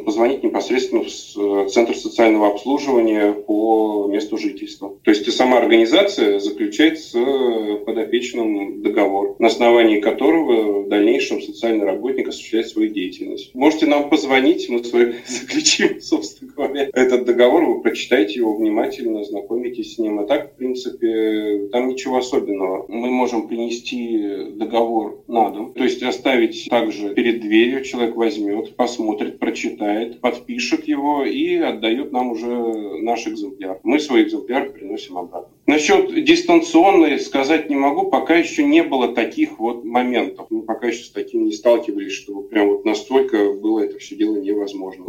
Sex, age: male, 20-39